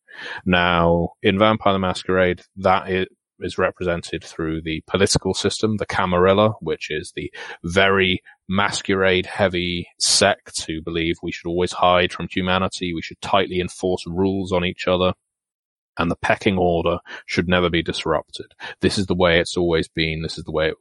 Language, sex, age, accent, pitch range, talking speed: English, male, 30-49, British, 85-95 Hz, 165 wpm